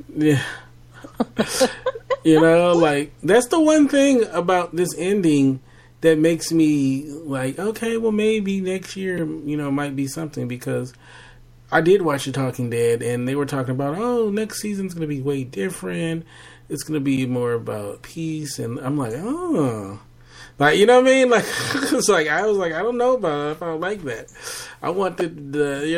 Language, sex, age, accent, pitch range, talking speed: English, male, 30-49, American, 120-165 Hz, 190 wpm